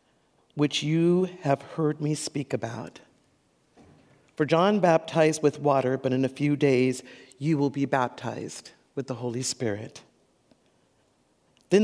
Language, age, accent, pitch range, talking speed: English, 50-69, American, 130-165 Hz, 130 wpm